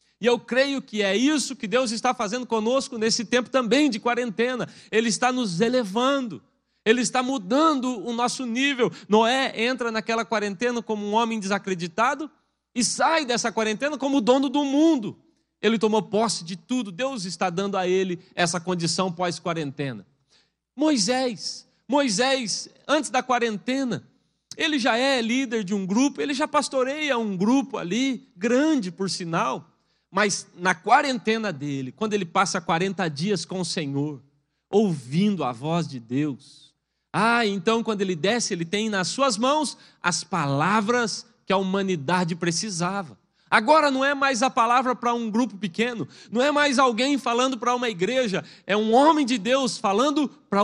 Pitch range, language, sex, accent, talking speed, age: 190-255 Hz, Portuguese, male, Brazilian, 160 wpm, 40-59